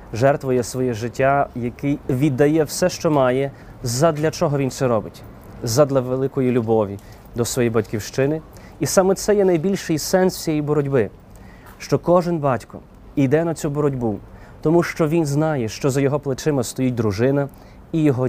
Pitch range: 115-145 Hz